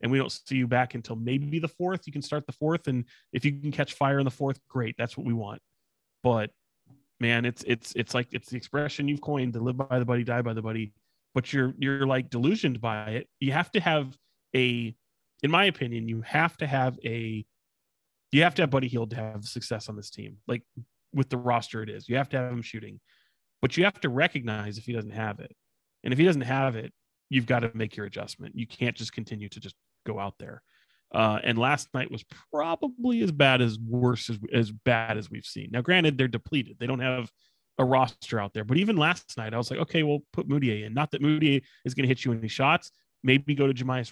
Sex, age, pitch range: male, 30-49, 115-145 Hz